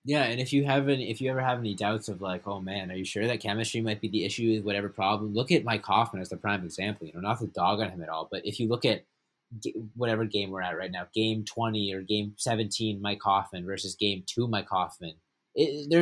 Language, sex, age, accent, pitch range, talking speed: English, male, 20-39, American, 105-120 Hz, 260 wpm